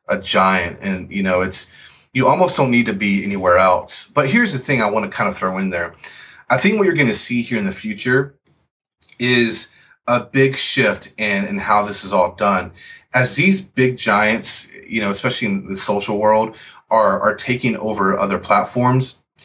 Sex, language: male, English